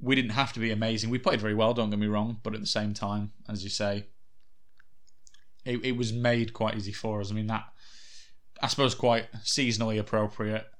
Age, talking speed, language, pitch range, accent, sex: 20-39, 210 wpm, English, 100-115 Hz, British, male